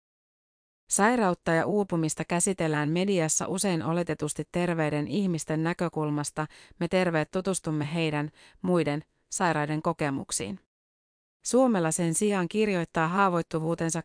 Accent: native